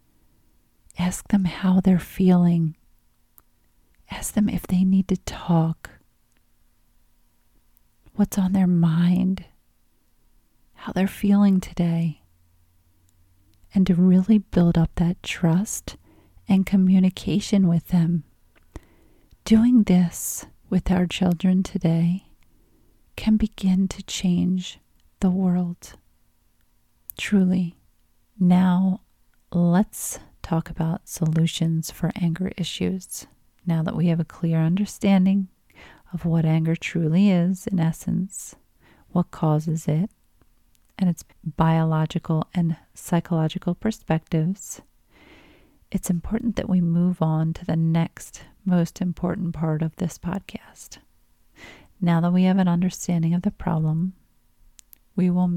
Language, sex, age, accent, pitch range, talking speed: English, female, 40-59, American, 165-190 Hz, 110 wpm